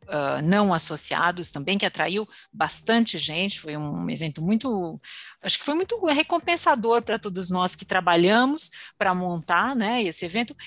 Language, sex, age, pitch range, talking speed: Portuguese, female, 50-69, 185-275 Hz, 145 wpm